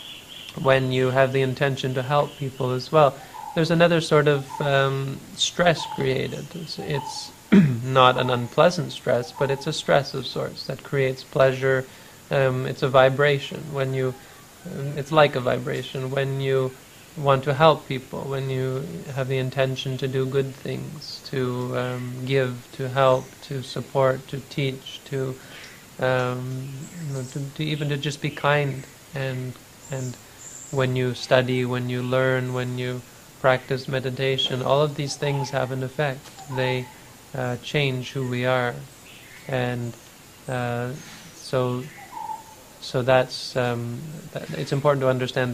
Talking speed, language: 150 wpm, English